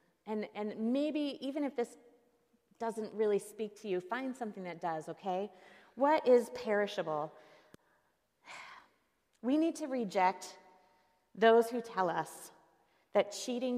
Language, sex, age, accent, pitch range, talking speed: English, female, 30-49, American, 175-230 Hz, 125 wpm